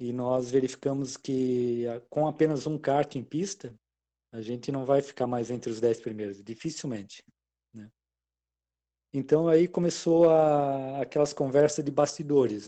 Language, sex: Portuguese, male